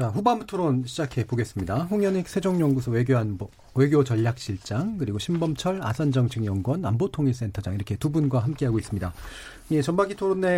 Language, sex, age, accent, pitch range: Korean, male, 40-59, native, 115-160 Hz